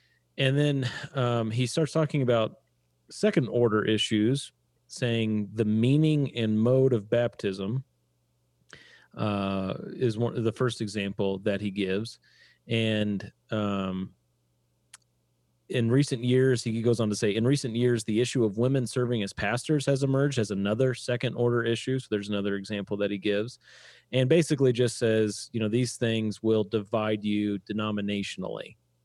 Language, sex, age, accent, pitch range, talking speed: English, male, 30-49, American, 100-125 Hz, 145 wpm